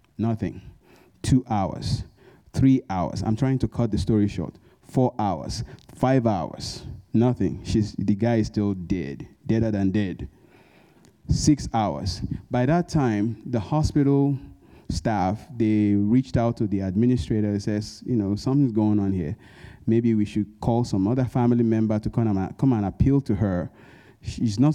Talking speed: 160 wpm